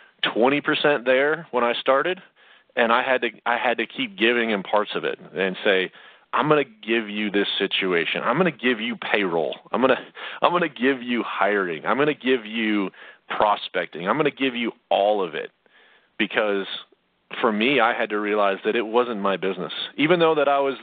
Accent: American